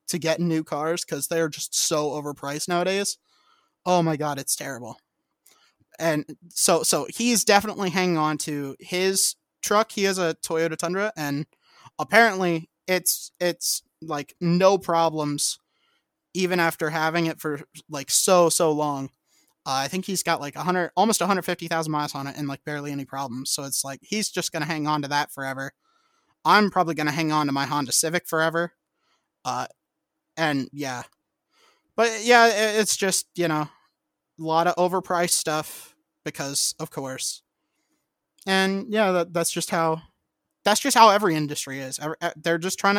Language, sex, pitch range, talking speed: English, male, 150-195 Hz, 165 wpm